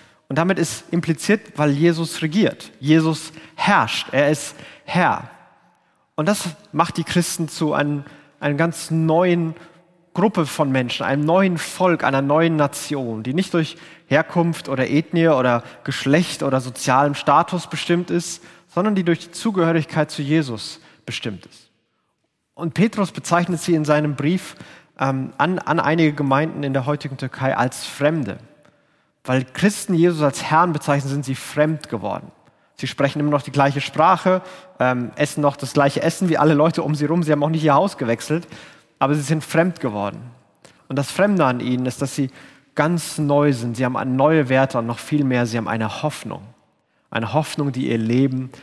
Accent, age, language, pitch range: German, 30-49, German, 135-165 Hz